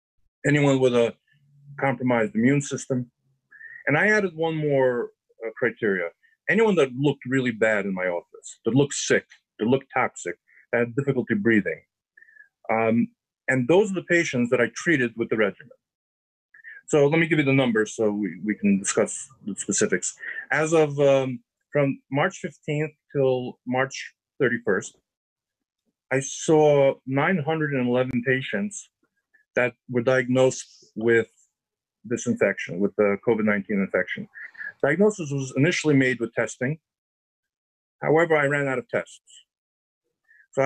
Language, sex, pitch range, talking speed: English, male, 120-155 Hz, 135 wpm